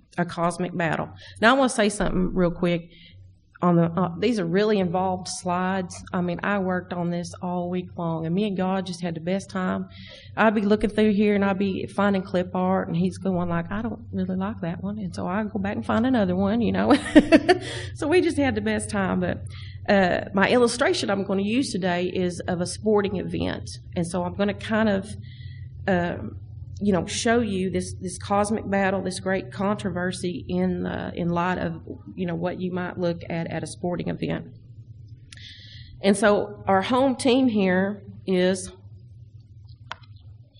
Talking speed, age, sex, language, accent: 195 wpm, 30-49, female, English, American